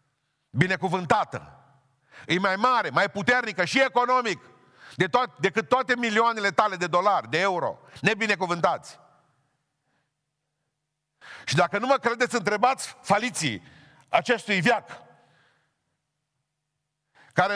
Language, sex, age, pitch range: Romanian, male, 50-69, 155-235 Hz